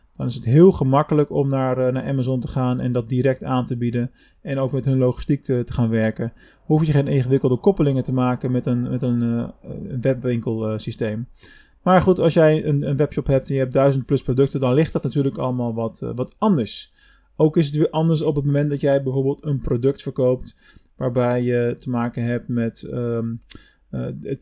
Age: 20-39